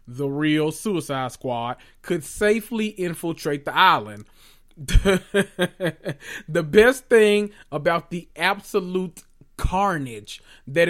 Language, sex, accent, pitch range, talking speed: English, male, American, 145-185 Hz, 95 wpm